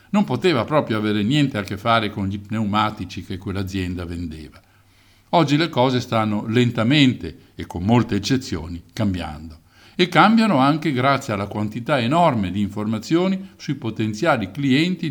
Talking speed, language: 145 wpm, Italian